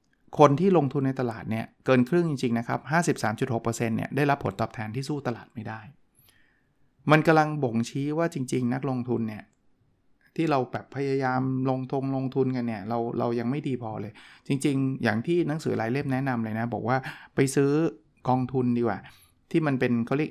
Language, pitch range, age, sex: Thai, 115-145 Hz, 20-39, male